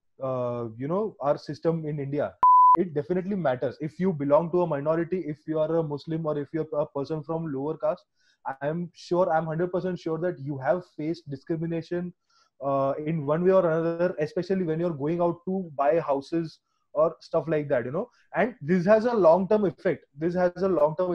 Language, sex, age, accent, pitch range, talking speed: English, male, 20-39, Indian, 160-205 Hz, 195 wpm